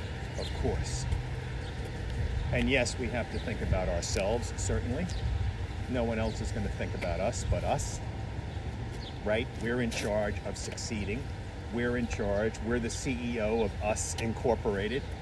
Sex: male